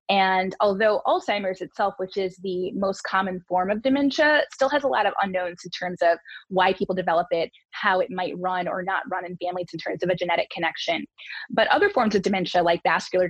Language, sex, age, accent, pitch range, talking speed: English, female, 20-39, American, 175-205 Hz, 210 wpm